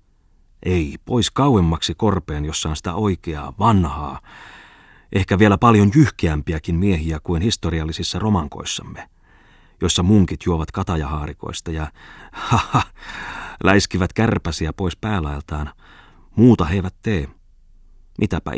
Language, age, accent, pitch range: Finnish, 30-49, native, 80-105 Hz